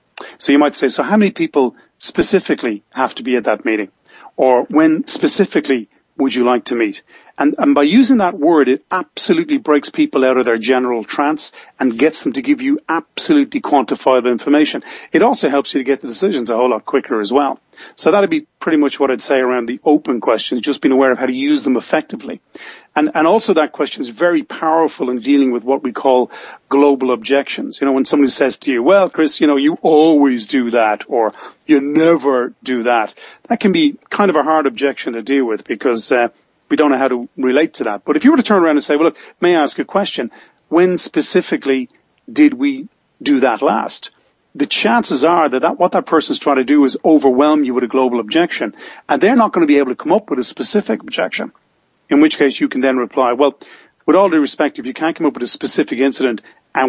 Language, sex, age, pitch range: English, male, 40-59, 130-210 Hz